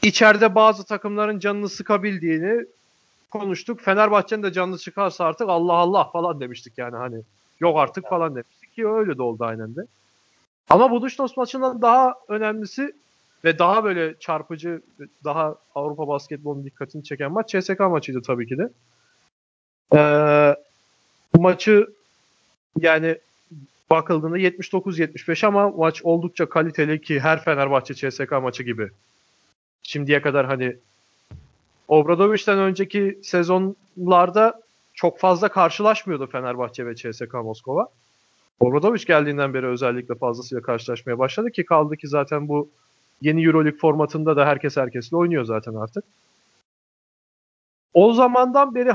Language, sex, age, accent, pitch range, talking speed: Turkish, male, 30-49, native, 145-210 Hz, 125 wpm